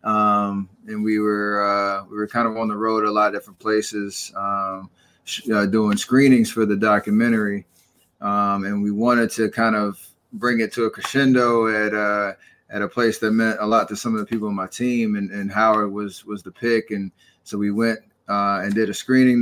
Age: 20-39